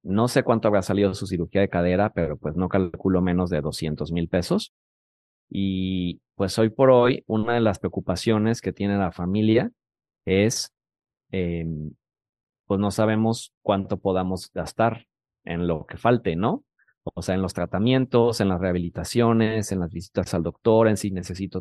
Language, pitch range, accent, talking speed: Spanish, 95-120 Hz, Mexican, 165 wpm